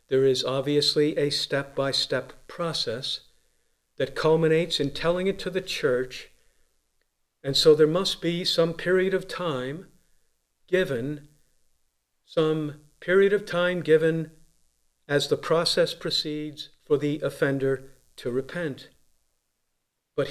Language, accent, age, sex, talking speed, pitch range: English, American, 50-69, male, 115 wpm, 130-165 Hz